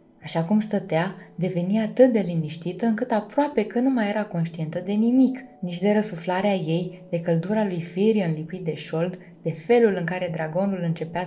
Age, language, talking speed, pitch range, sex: 20-39, Romanian, 175 wpm, 170-220 Hz, female